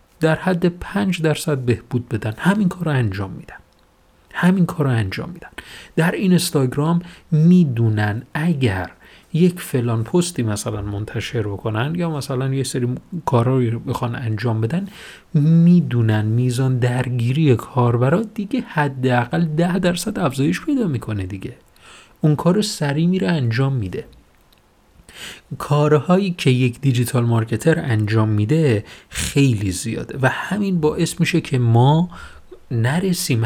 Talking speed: 120 wpm